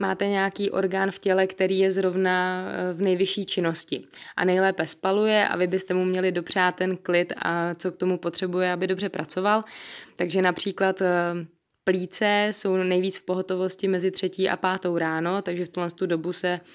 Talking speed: 170 wpm